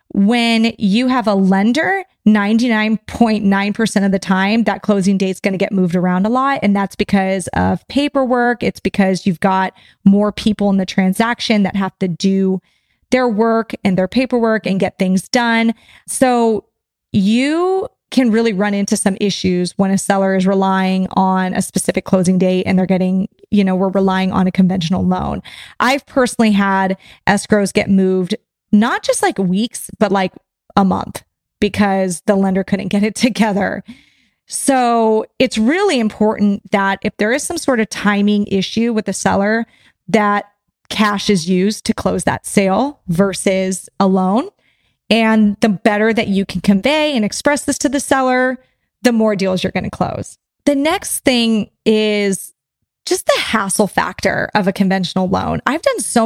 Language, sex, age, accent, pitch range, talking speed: English, female, 20-39, American, 190-230 Hz, 170 wpm